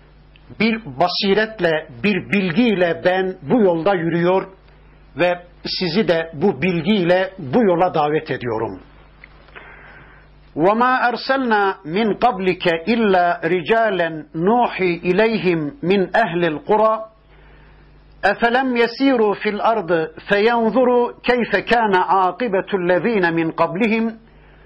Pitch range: 170-220 Hz